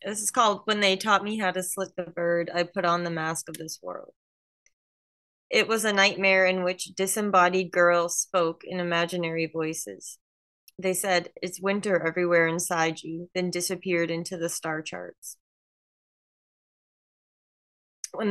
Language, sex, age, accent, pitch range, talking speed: English, female, 20-39, American, 160-180 Hz, 150 wpm